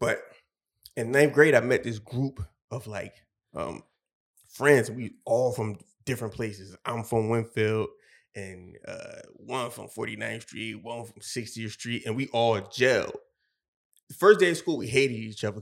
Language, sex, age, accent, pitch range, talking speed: English, male, 20-39, American, 115-145 Hz, 165 wpm